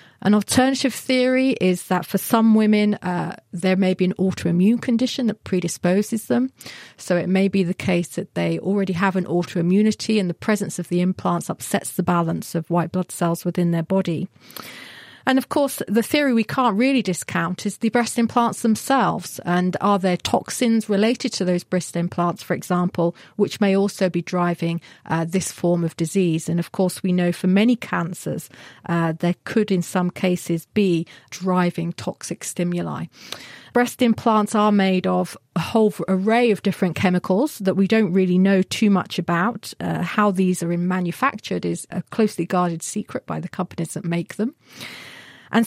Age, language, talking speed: 40-59, English, 175 wpm